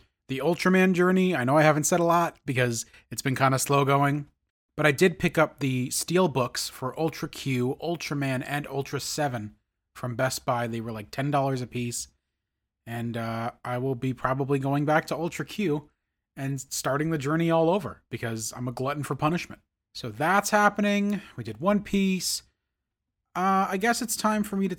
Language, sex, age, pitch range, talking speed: English, male, 30-49, 120-160 Hz, 190 wpm